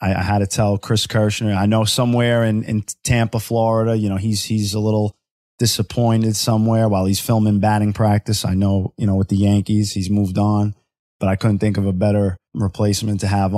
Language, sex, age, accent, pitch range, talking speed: English, male, 20-39, American, 100-110 Hz, 205 wpm